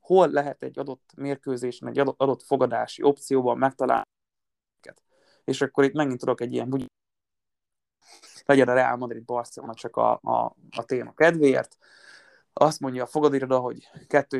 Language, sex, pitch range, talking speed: Hungarian, male, 125-150 Hz, 140 wpm